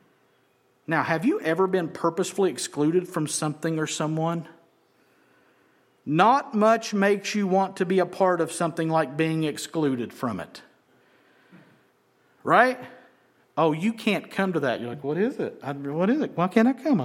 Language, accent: English, American